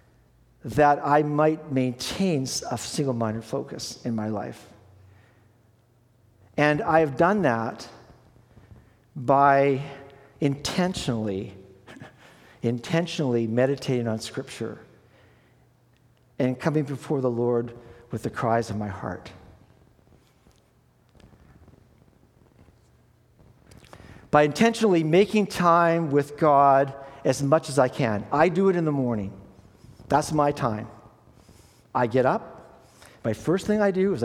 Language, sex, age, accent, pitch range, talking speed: English, male, 50-69, American, 120-155 Hz, 105 wpm